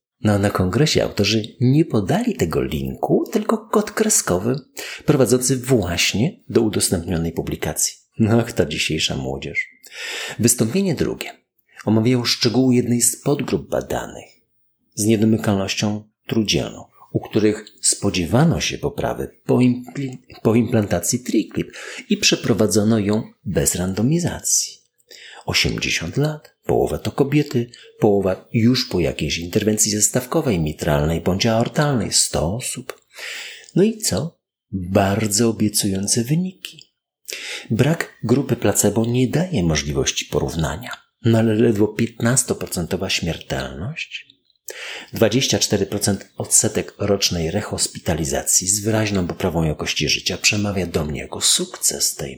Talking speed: 110 wpm